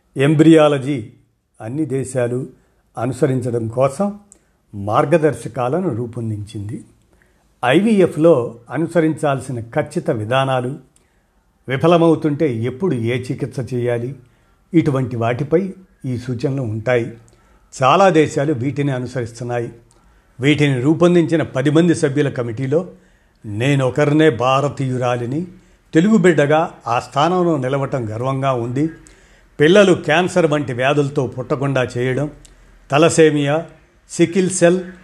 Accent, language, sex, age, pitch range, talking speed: native, Telugu, male, 50-69, 125-160 Hz, 80 wpm